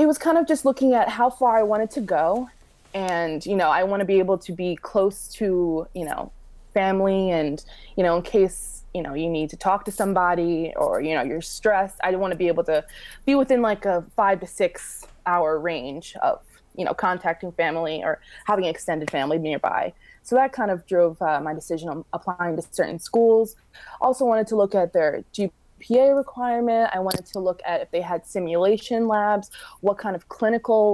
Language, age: English, 20-39